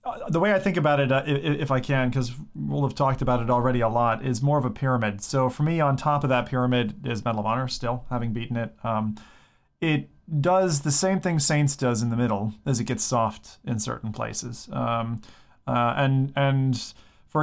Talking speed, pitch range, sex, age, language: 225 wpm, 120-150 Hz, male, 30-49, English